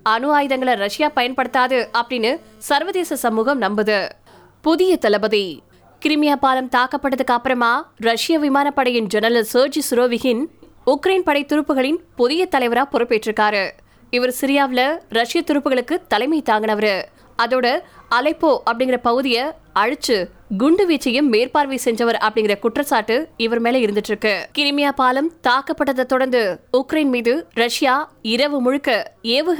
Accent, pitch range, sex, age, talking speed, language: native, 235-290 Hz, female, 20-39, 55 wpm, Tamil